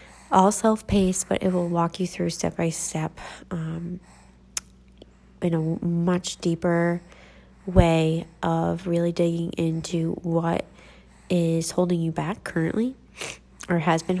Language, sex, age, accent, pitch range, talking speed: English, female, 20-39, American, 160-185 Hz, 125 wpm